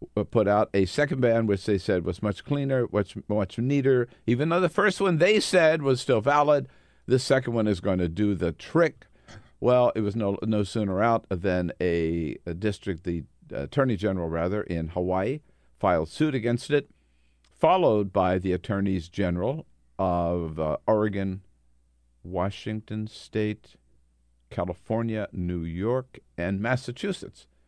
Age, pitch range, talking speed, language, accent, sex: 50-69, 90-120 Hz, 150 wpm, English, American, male